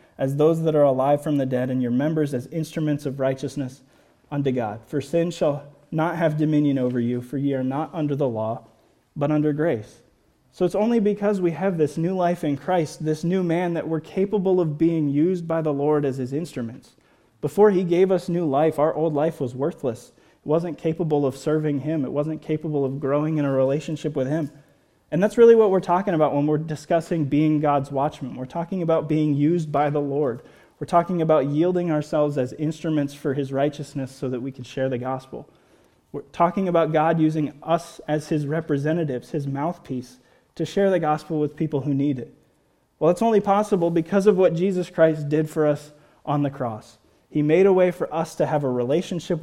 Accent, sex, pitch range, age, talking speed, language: American, male, 140-165 Hz, 20-39, 210 wpm, English